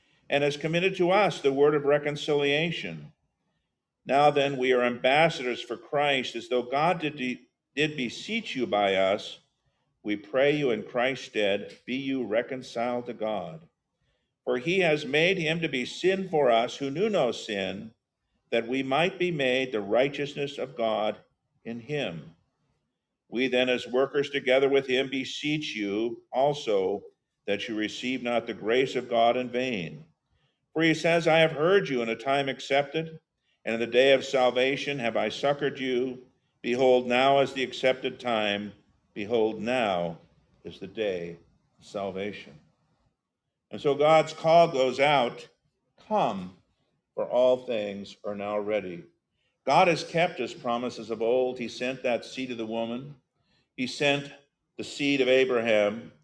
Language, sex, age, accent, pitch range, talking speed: English, male, 50-69, American, 115-145 Hz, 160 wpm